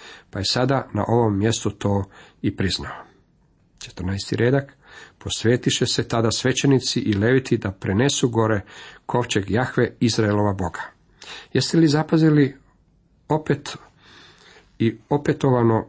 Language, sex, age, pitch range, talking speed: Croatian, male, 50-69, 105-140 Hz, 115 wpm